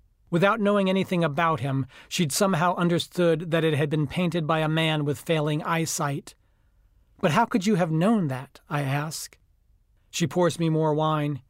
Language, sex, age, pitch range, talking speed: English, male, 40-59, 150-170 Hz, 170 wpm